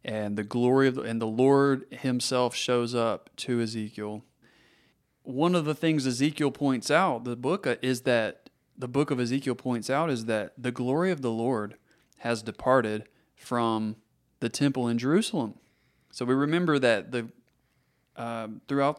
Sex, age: male, 30-49